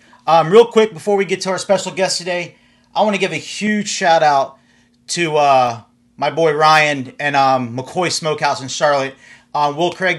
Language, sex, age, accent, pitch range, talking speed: English, male, 40-59, American, 120-155 Hz, 190 wpm